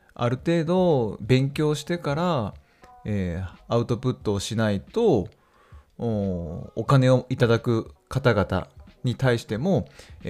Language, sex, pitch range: Japanese, male, 90-125 Hz